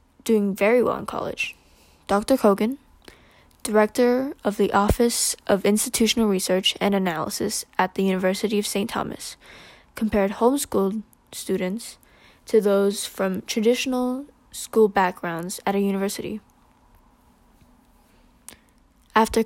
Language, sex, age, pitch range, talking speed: English, female, 10-29, 195-225 Hz, 110 wpm